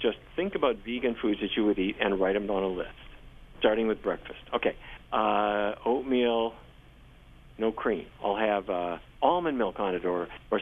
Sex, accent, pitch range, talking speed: male, American, 100-125 Hz, 180 wpm